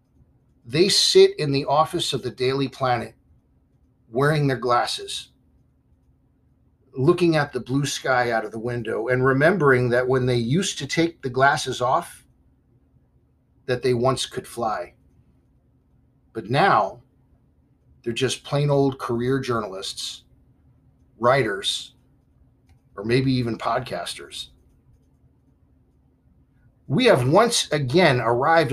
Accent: American